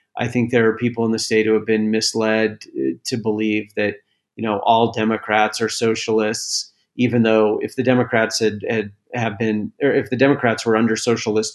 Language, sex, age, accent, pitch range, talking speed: English, male, 40-59, American, 110-125 Hz, 190 wpm